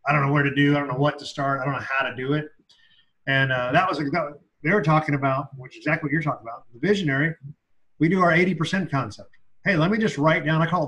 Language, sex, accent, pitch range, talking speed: English, male, American, 130-155 Hz, 285 wpm